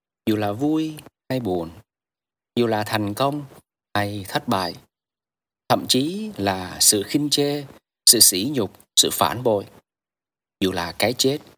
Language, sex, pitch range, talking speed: Vietnamese, male, 95-125 Hz, 145 wpm